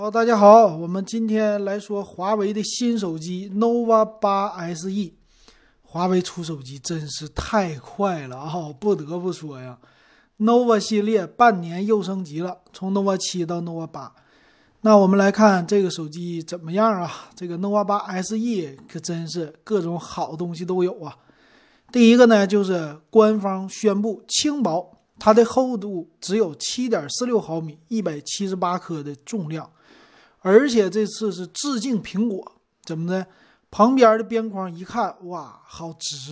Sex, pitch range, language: male, 170-220 Hz, Chinese